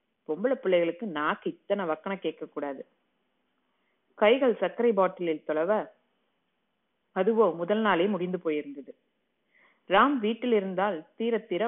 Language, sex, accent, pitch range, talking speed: Tamil, female, native, 160-215 Hz, 105 wpm